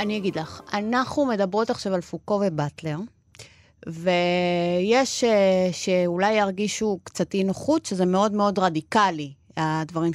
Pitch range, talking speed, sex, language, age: 180-240 Hz, 110 wpm, female, Hebrew, 30-49